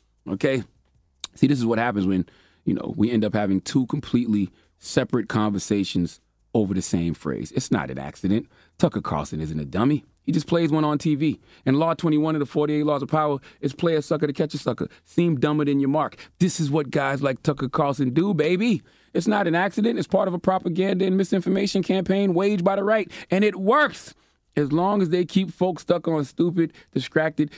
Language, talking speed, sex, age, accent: English, 210 wpm, male, 30-49, American